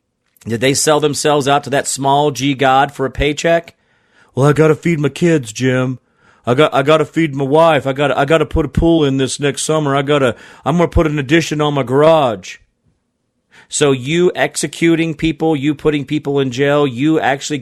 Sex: male